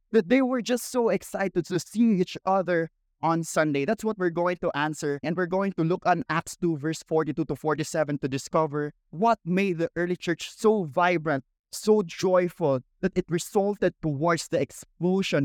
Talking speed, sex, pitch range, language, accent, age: 185 wpm, male, 165-210 Hz, English, Filipino, 20-39